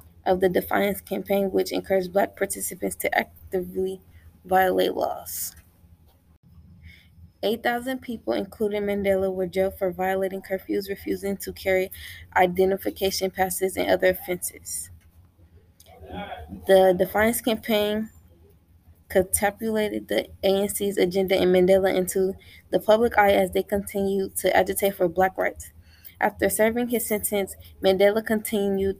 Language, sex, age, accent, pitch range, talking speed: English, female, 20-39, American, 180-200 Hz, 115 wpm